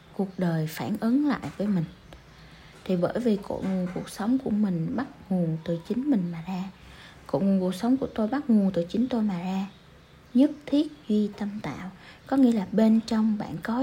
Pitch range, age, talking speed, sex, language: 180-230 Hz, 20-39, 205 wpm, female, Vietnamese